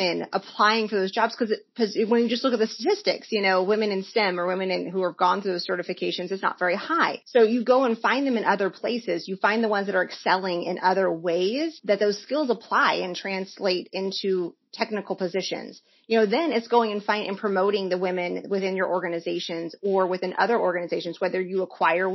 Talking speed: 210 wpm